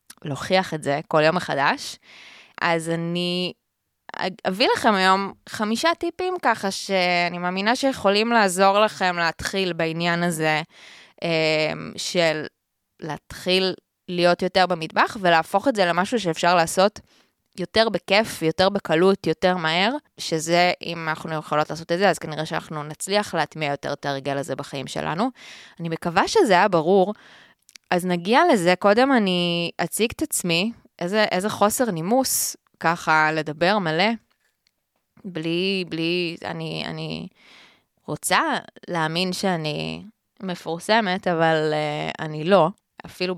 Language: Hebrew